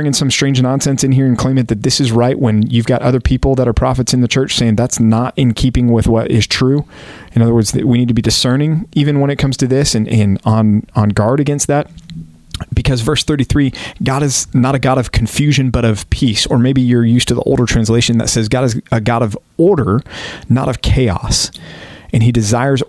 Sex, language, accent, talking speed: male, English, American, 235 wpm